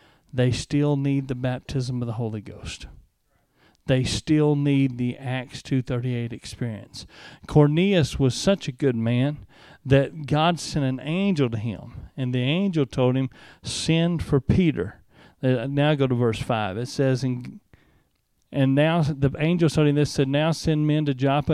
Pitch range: 135-180 Hz